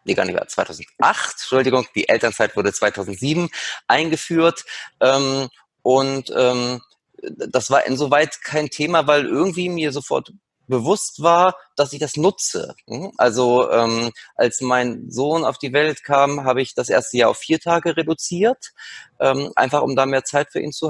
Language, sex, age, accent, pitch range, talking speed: German, male, 30-49, German, 125-165 Hz, 145 wpm